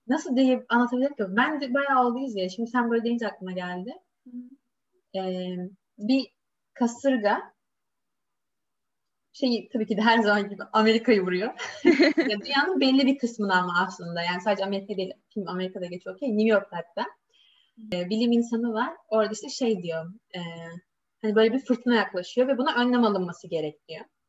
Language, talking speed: Turkish, 145 wpm